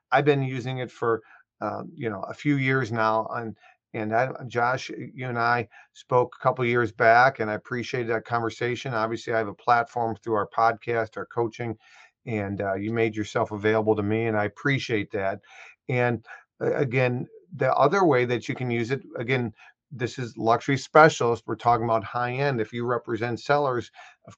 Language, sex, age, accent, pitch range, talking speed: English, male, 40-59, American, 110-125 Hz, 190 wpm